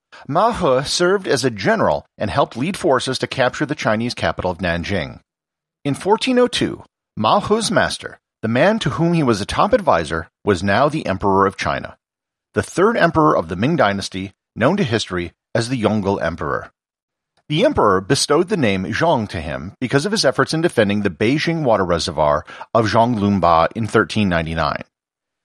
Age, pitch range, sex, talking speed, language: 40-59, 95-155 Hz, male, 175 wpm, English